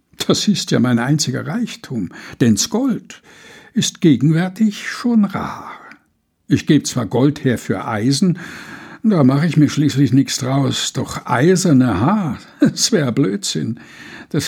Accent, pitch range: German, 130-190 Hz